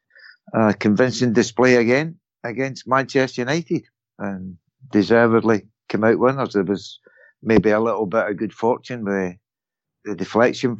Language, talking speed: English, 145 wpm